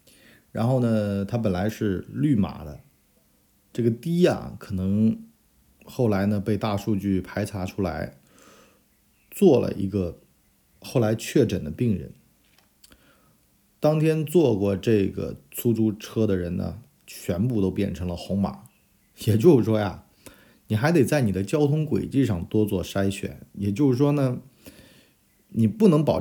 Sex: male